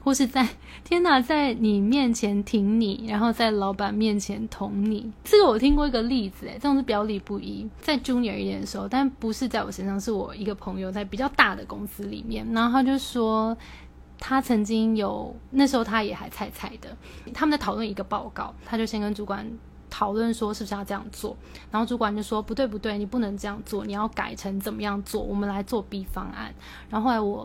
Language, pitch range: Chinese, 205-255 Hz